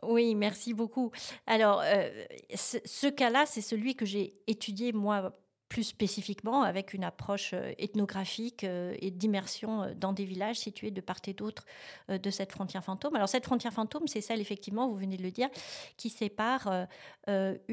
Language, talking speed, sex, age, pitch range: French, 170 wpm, female, 40-59, 195-235 Hz